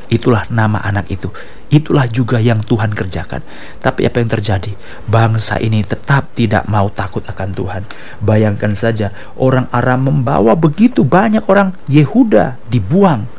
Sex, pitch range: male, 110-175 Hz